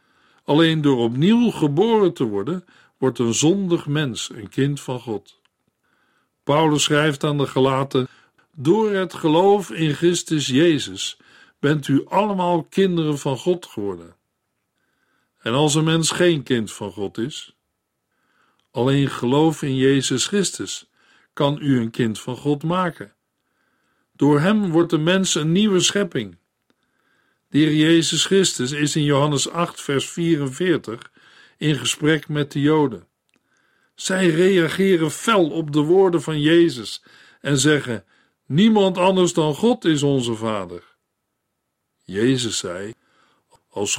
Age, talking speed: 50-69, 130 wpm